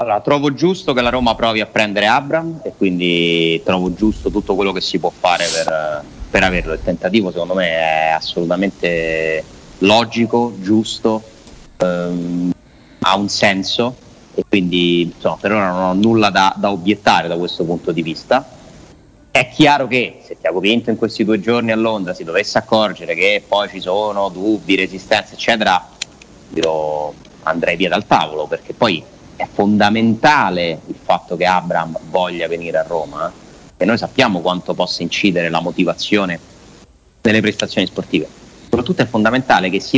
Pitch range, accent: 90-115 Hz, native